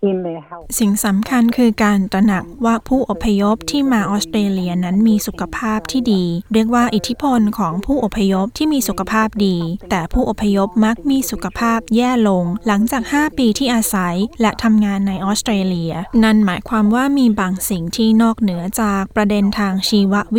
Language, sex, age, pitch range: Thai, female, 20-39, 195-230 Hz